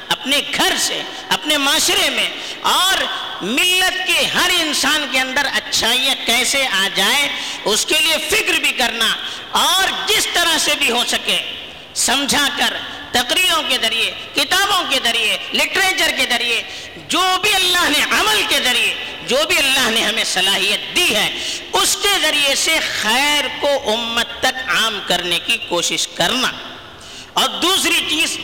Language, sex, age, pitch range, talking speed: Urdu, female, 50-69, 235-330 Hz, 150 wpm